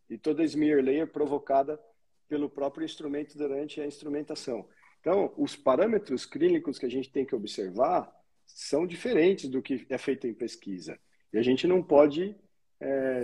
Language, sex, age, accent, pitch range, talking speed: Portuguese, male, 50-69, Brazilian, 140-200 Hz, 165 wpm